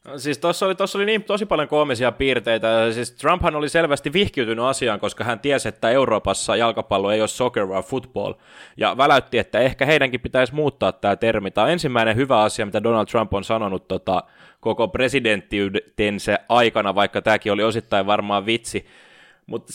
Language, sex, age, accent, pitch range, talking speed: Finnish, male, 20-39, native, 105-140 Hz, 175 wpm